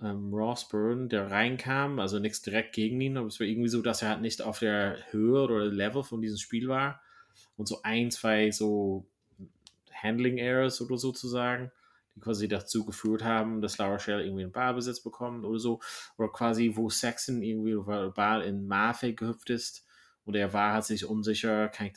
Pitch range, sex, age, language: 105-120 Hz, male, 30-49, German